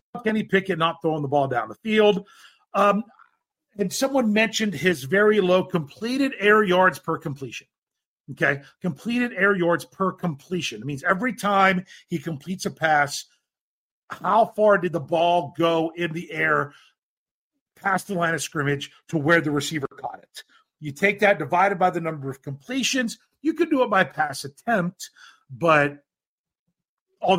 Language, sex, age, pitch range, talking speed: English, male, 40-59, 160-220 Hz, 160 wpm